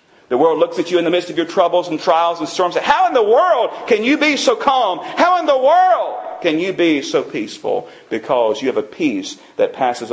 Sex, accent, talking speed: male, American, 235 wpm